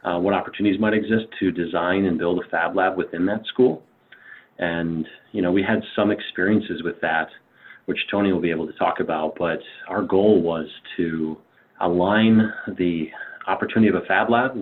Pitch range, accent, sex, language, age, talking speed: 85-110 Hz, American, male, English, 30-49, 180 wpm